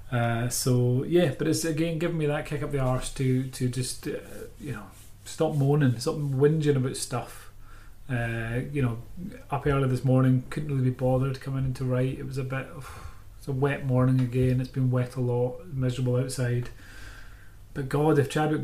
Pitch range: 120-140 Hz